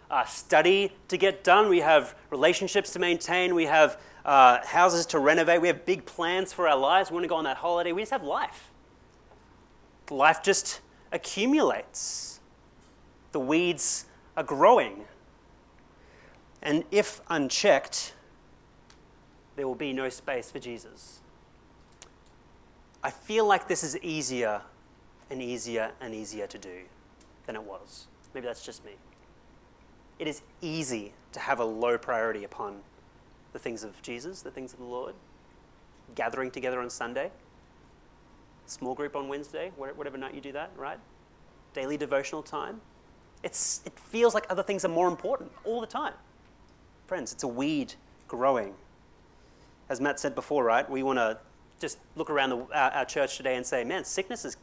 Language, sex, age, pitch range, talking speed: English, male, 30-49, 125-180 Hz, 155 wpm